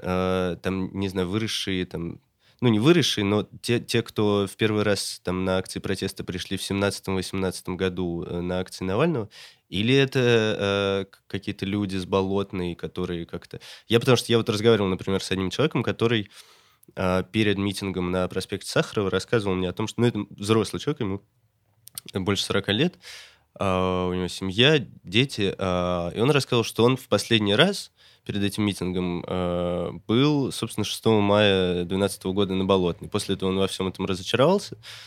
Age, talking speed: 20-39, 165 wpm